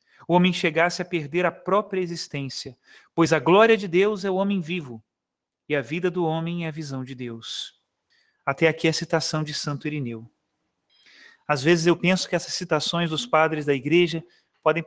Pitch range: 155-185 Hz